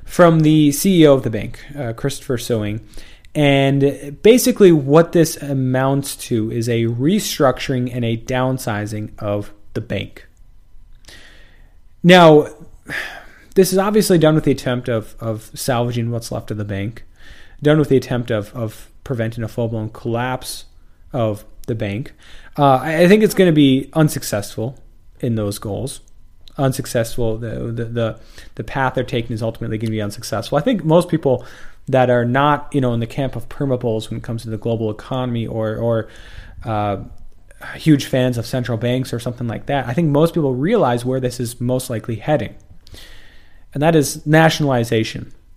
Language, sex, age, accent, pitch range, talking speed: English, male, 30-49, American, 115-145 Hz, 165 wpm